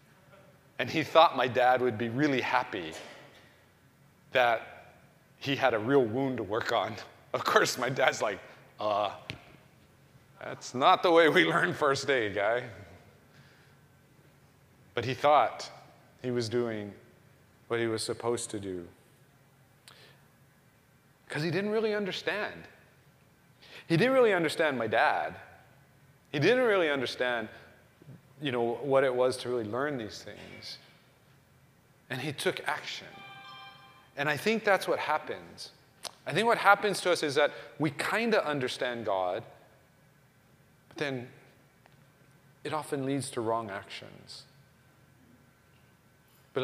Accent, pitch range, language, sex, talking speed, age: American, 125-150 Hz, English, male, 130 wpm, 30-49